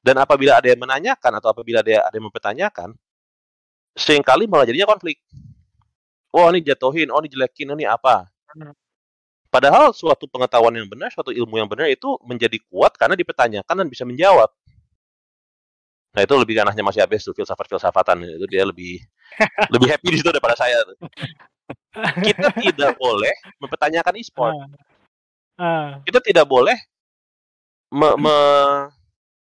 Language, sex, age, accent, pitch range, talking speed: Indonesian, male, 30-49, native, 110-165 Hz, 135 wpm